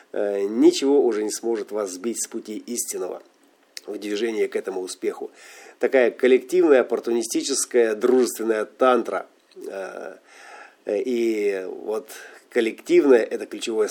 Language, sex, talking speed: Russian, male, 105 wpm